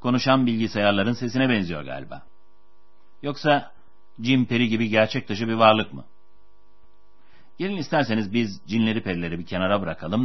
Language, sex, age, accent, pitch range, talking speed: Turkish, male, 60-79, native, 90-130 Hz, 130 wpm